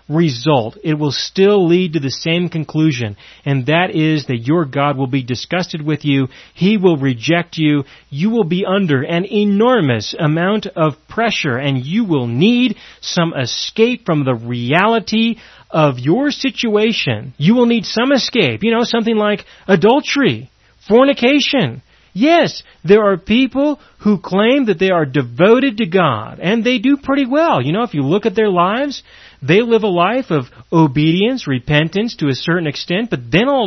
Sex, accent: male, American